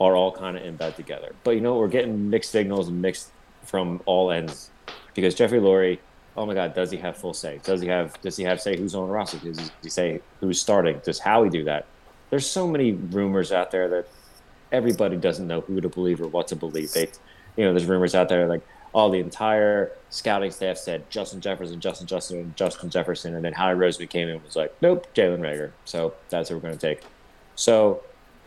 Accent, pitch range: American, 85-100 Hz